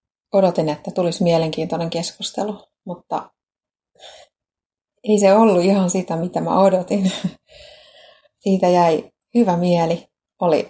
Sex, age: female, 30-49